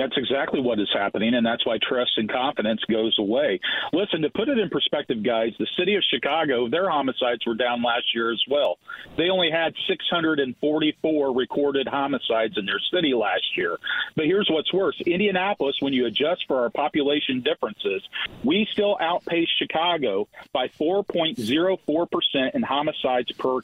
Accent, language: American, English